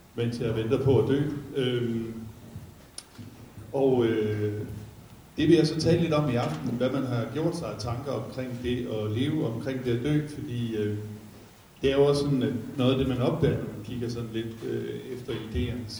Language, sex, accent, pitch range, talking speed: Danish, male, native, 110-130 Hz, 200 wpm